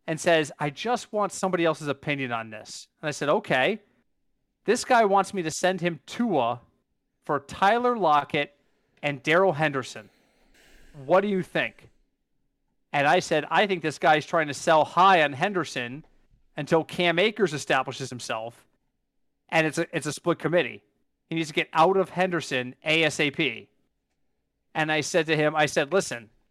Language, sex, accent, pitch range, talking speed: English, male, American, 145-185 Hz, 165 wpm